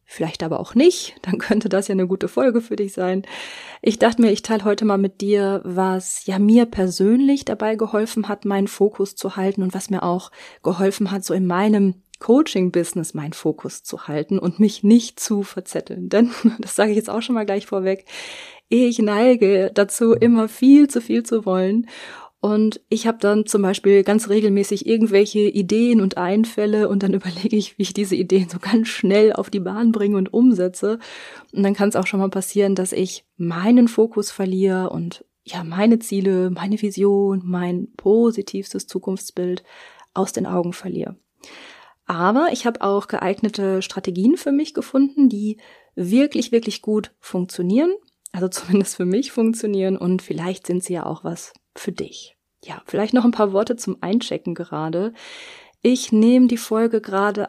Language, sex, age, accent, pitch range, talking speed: German, female, 30-49, German, 185-225 Hz, 175 wpm